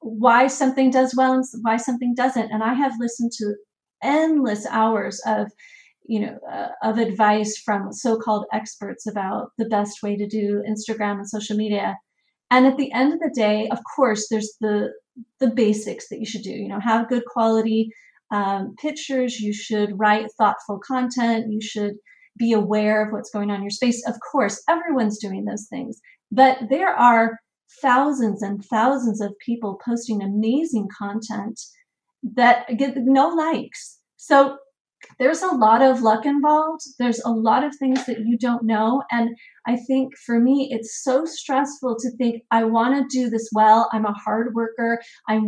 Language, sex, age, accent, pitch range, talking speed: Hindi, female, 30-49, American, 215-265 Hz, 175 wpm